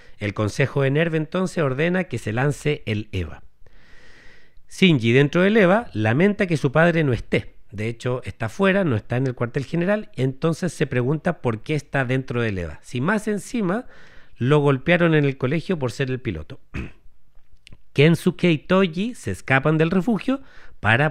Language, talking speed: Spanish, 170 wpm